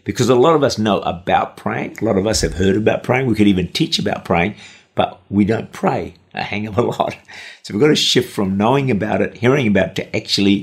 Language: English